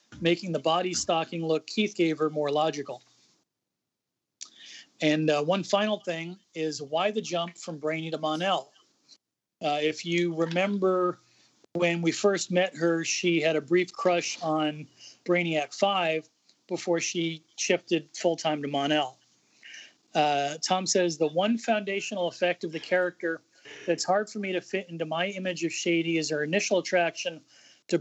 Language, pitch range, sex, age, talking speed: English, 160-185 Hz, male, 40-59, 155 wpm